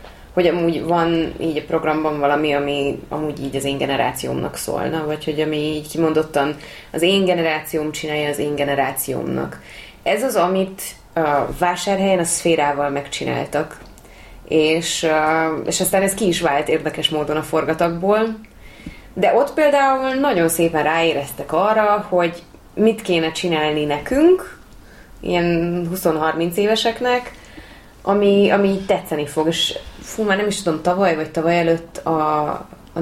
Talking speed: 135 wpm